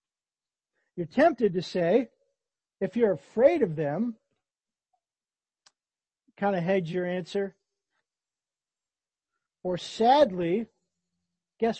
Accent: American